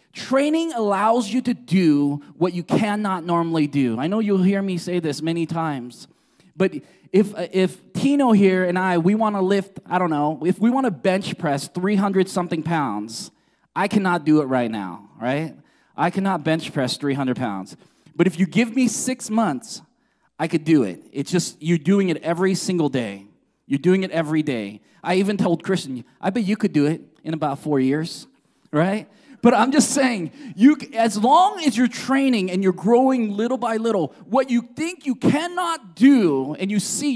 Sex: male